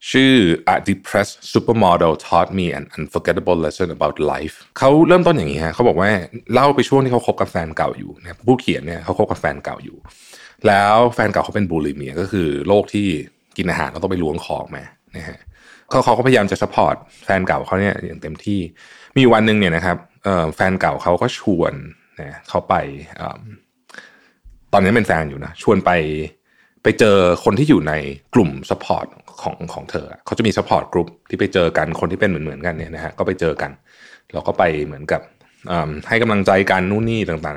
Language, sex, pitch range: Thai, male, 85-110 Hz